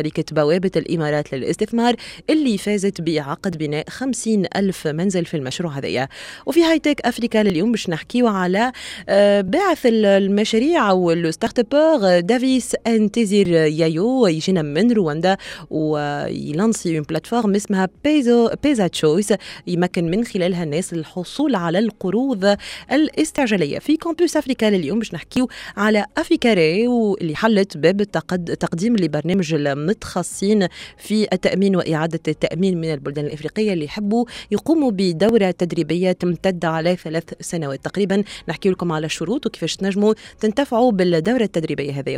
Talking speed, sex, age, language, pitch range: 120 wpm, female, 30-49, French, 165-225 Hz